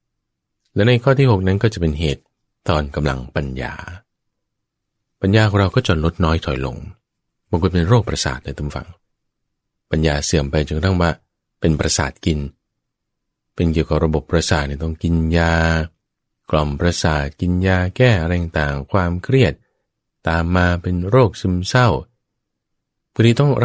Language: English